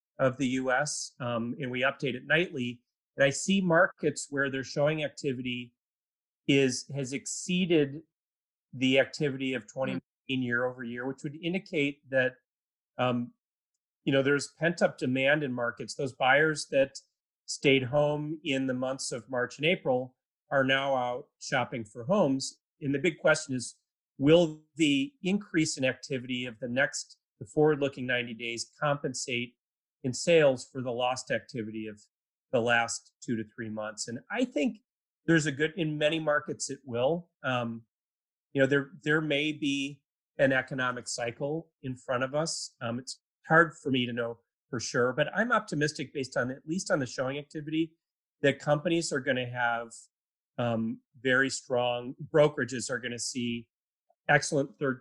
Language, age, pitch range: English, 30-49, 125-150 Hz